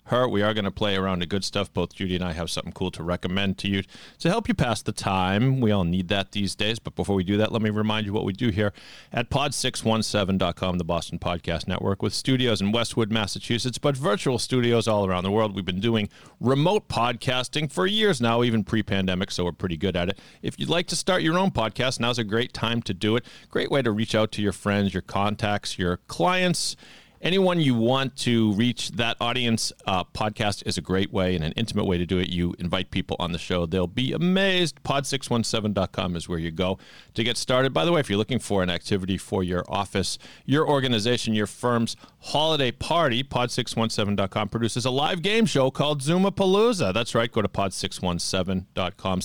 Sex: male